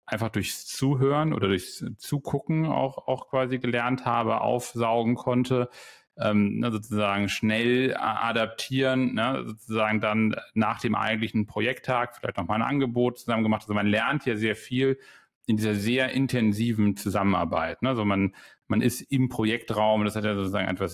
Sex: male